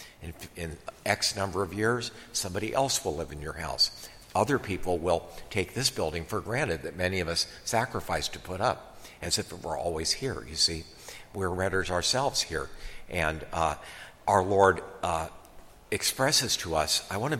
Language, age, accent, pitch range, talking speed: English, 60-79, American, 90-110 Hz, 170 wpm